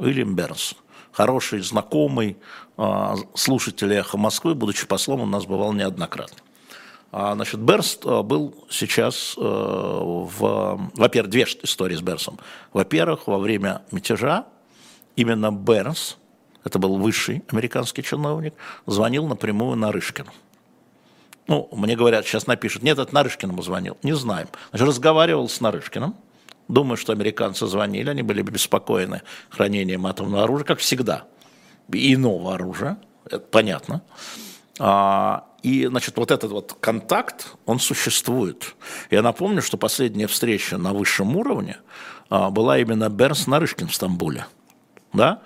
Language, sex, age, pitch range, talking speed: Russian, male, 50-69, 100-125 Hz, 120 wpm